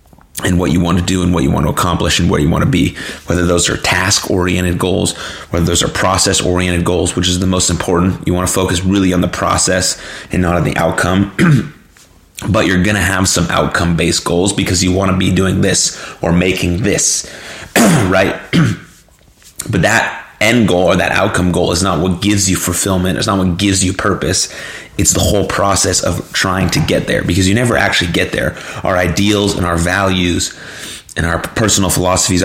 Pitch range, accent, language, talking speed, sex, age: 90-95 Hz, American, English, 200 wpm, male, 30-49